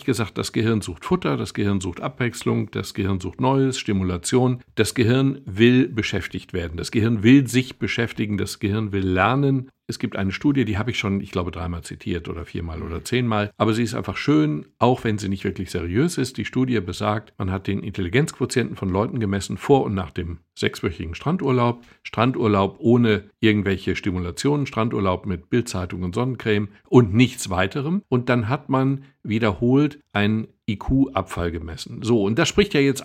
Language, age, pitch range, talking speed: German, 60-79, 95-130 Hz, 180 wpm